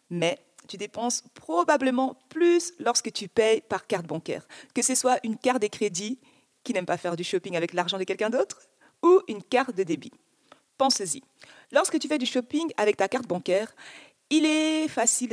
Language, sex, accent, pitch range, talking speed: French, female, French, 195-275 Hz, 190 wpm